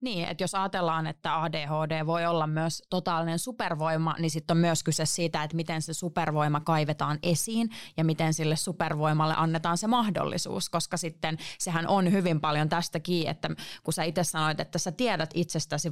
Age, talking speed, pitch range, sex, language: 30-49, 175 wpm, 155-180 Hz, female, Finnish